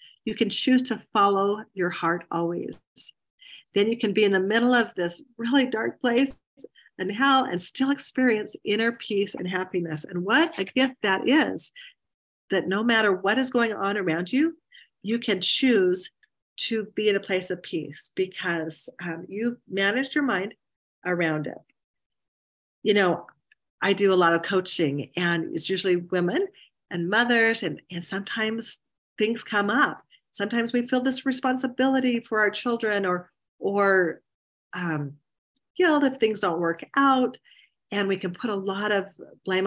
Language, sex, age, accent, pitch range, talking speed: English, female, 40-59, American, 180-245 Hz, 165 wpm